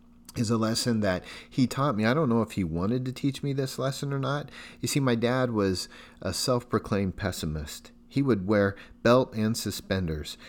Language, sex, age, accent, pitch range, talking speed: English, male, 40-59, American, 90-130 Hz, 195 wpm